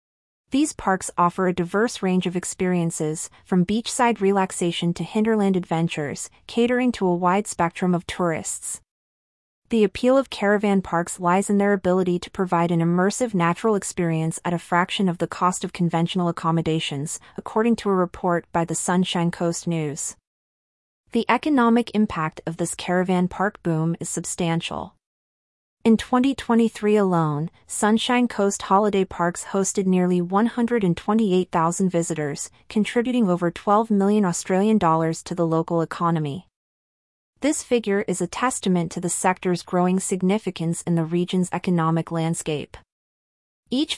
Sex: female